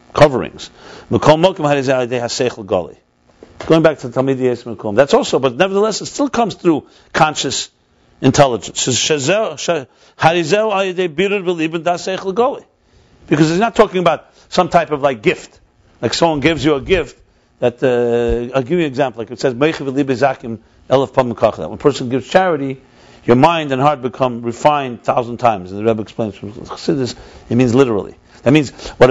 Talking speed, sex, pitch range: 140 wpm, male, 130-175 Hz